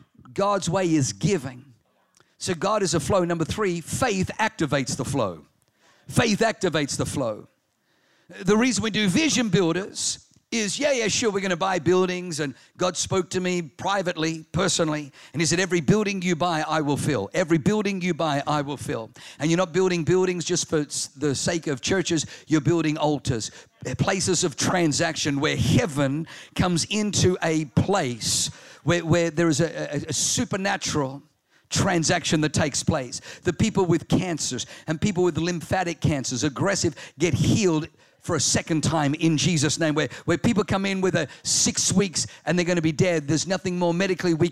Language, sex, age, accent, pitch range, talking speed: English, male, 50-69, British, 155-190 Hz, 180 wpm